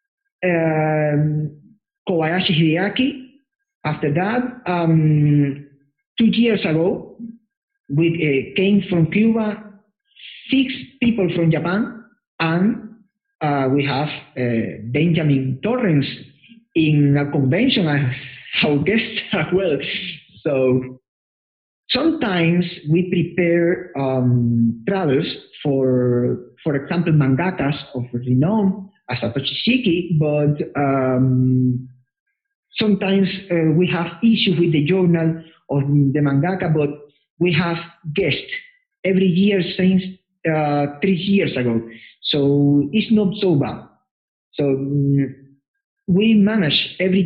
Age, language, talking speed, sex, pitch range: 50-69, English, 100 wpm, male, 145-195 Hz